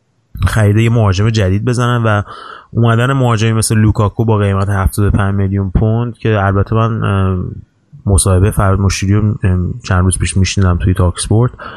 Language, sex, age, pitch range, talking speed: Persian, male, 30-49, 95-115 Hz, 135 wpm